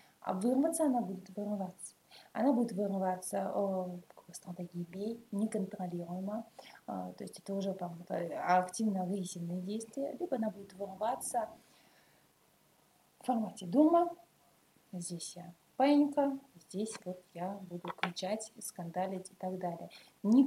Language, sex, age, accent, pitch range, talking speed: Russian, female, 30-49, native, 180-225 Hz, 115 wpm